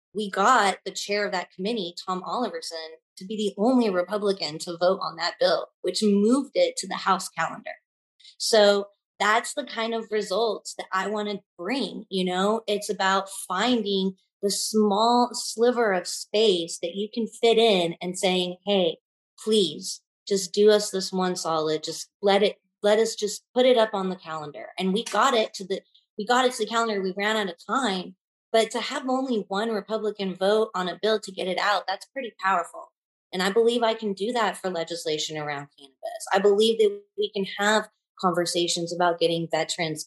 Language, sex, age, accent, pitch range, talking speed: English, female, 30-49, American, 185-225 Hz, 190 wpm